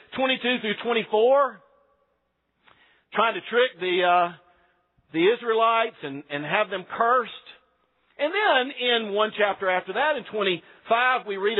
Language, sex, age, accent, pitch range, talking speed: English, male, 50-69, American, 195-265 Hz, 135 wpm